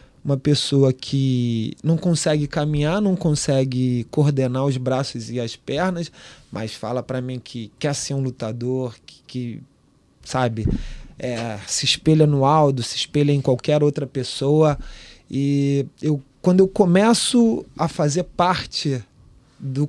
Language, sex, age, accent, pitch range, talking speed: Portuguese, male, 20-39, Brazilian, 130-160 Hz, 135 wpm